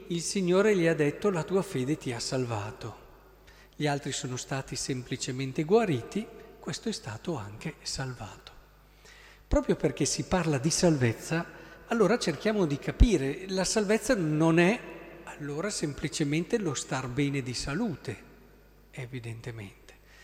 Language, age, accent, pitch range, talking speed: Italian, 50-69, native, 130-180 Hz, 130 wpm